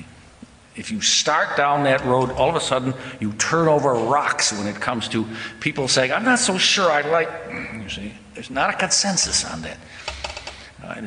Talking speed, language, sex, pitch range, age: 190 wpm, English, male, 110-145 Hz, 60-79